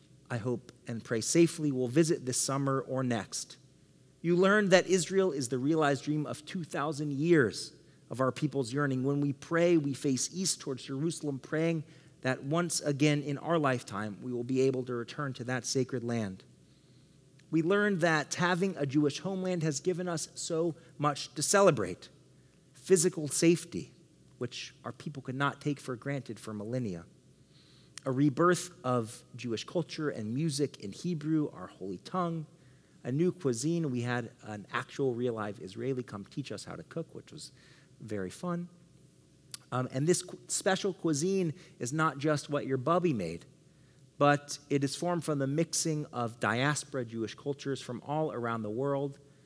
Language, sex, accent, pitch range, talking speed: English, male, American, 130-160 Hz, 165 wpm